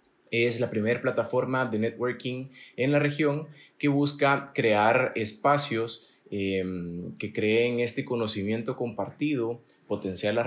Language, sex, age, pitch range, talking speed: Spanish, male, 20-39, 100-120 Hz, 120 wpm